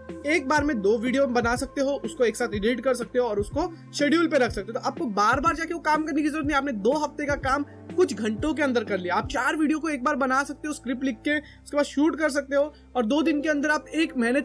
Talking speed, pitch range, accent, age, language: 145 wpm, 235-290 Hz, native, 20-39, Hindi